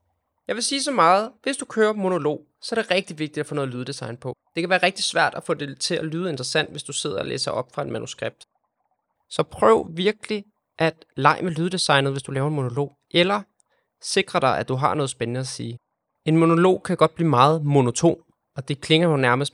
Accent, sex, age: native, male, 20-39